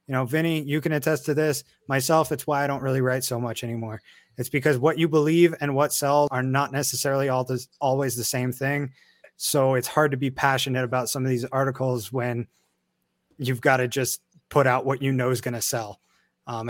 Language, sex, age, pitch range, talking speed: English, male, 20-39, 125-155 Hz, 210 wpm